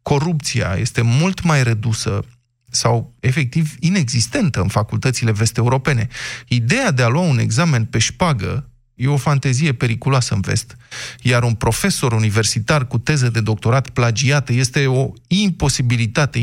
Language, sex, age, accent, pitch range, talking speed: Romanian, male, 20-39, native, 115-145 Hz, 135 wpm